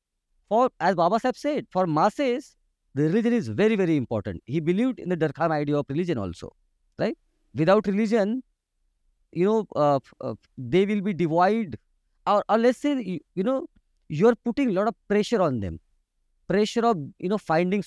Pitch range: 145-230 Hz